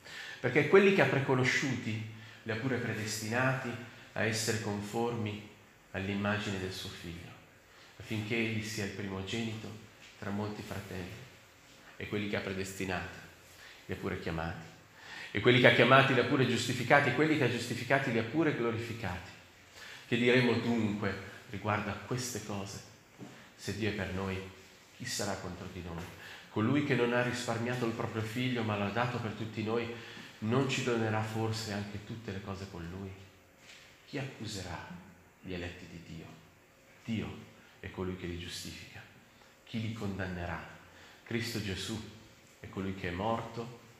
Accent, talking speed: native, 155 wpm